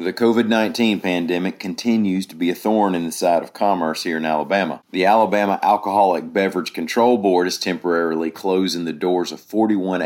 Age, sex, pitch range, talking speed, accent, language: 40-59, male, 80-100 Hz, 175 wpm, American, English